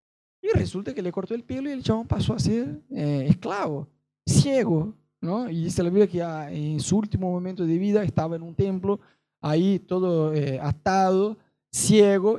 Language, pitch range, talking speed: Spanish, 160-210 Hz, 185 wpm